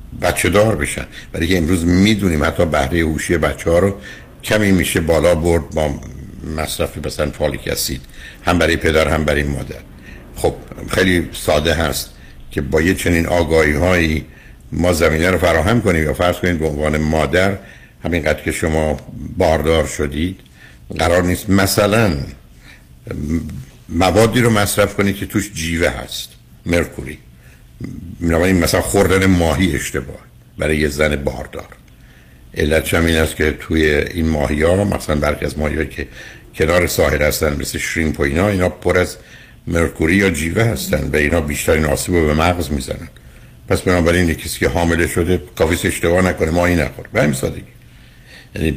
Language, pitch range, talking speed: Persian, 75-90 Hz, 150 wpm